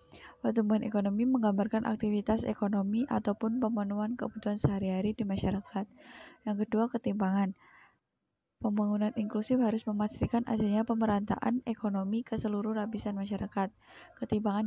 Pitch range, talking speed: 200-225 Hz, 105 wpm